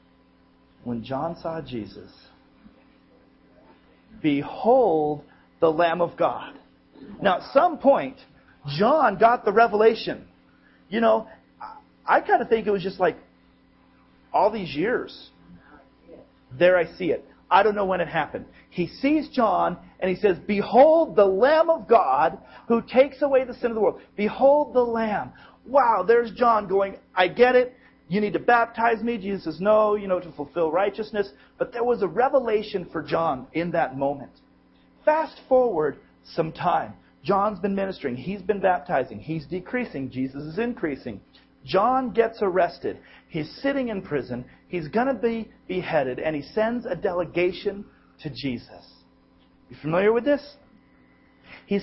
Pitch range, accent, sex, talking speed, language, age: 155-235 Hz, American, male, 150 wpm, English, 40-59